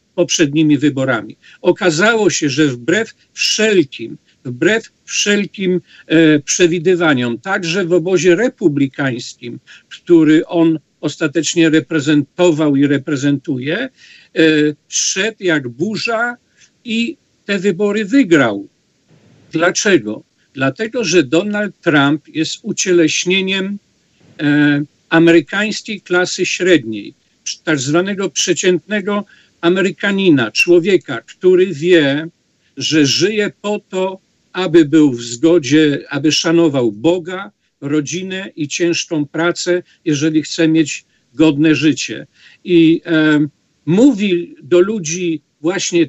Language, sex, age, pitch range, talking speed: Polish, male, 50-69, 155-205 Hz, 95 wpm